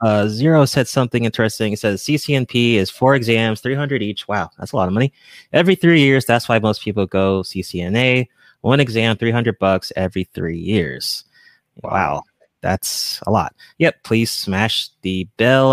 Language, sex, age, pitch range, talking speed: English, male, 20-39, 95-125 Hz, 170 wpm